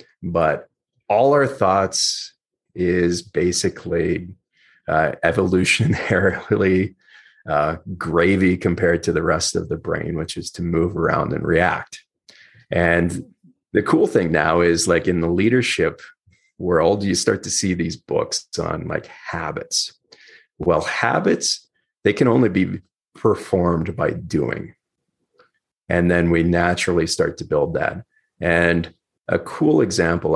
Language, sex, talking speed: English, male, 130 wpm